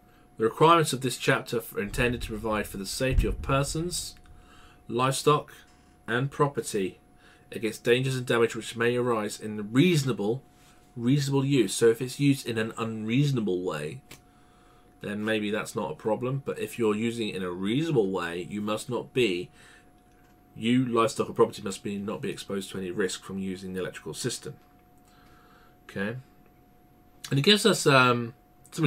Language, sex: English, male